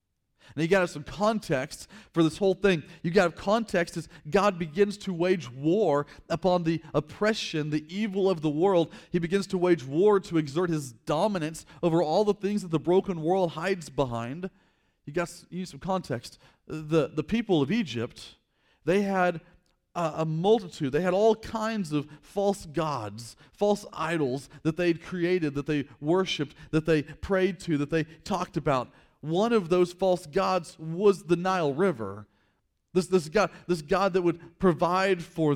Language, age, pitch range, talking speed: English, 40-59, 145-185 Hz, 175 wpm